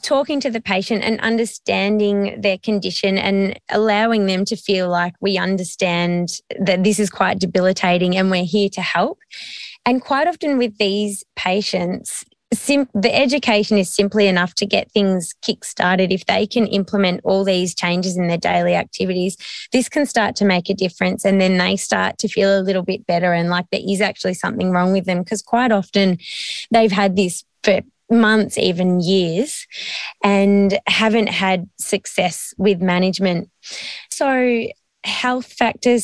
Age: 20-39